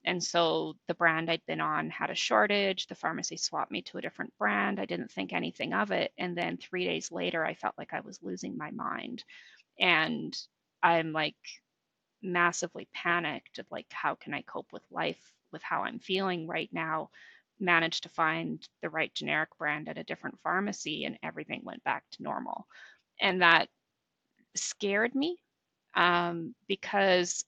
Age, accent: 30-49, American